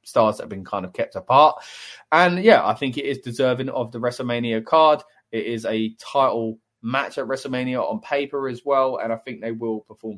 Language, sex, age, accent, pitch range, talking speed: English, male, 20-39, British, 110-140 Hz, 210 wpm